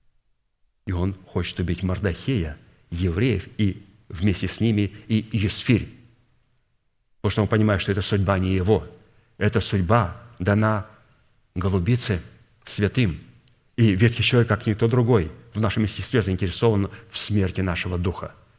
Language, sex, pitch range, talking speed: Russian, male, 100-120 Hz, 130 wpm